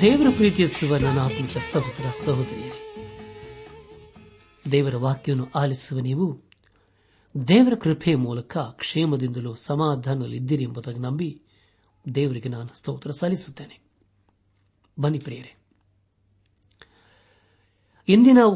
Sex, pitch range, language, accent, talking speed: male, 100-155 Hz, Kannada, native, 70 wpm